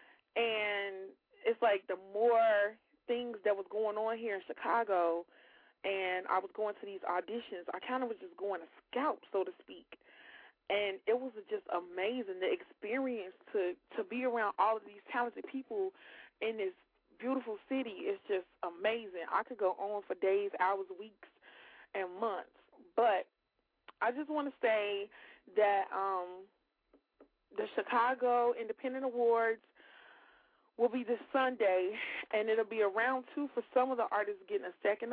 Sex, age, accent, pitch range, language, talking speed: female, 20-39, American, 195-240 Hz, English, 160 wpm